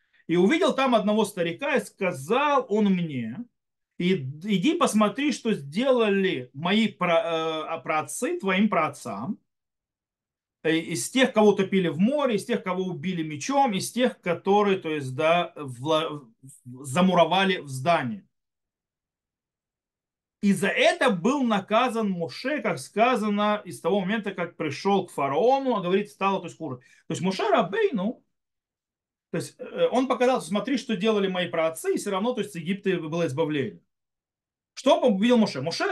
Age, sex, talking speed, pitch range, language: 40-59, male, 150 wpm, 160-225 Hz, Russian